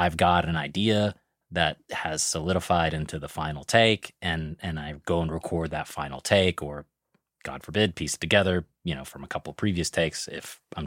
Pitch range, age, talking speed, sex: 85-120 Hz, 30-49, 200 wpm, male